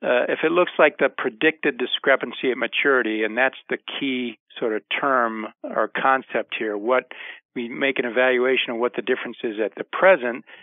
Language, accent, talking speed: English, American, 185 wpm